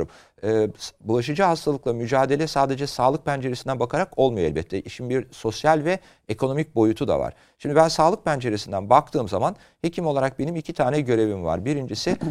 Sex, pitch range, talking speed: male, 115-155 Hz, 155 wpm